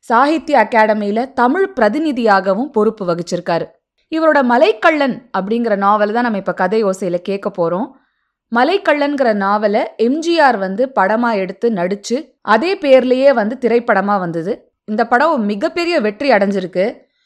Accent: native